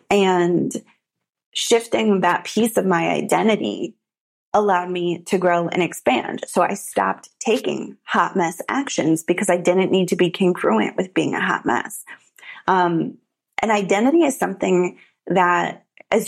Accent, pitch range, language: American, 175-210 Hz, English